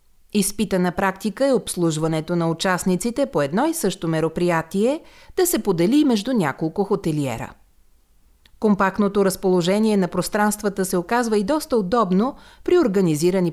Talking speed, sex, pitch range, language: 125 wpm, female, 165-235 Hz, Bulgarian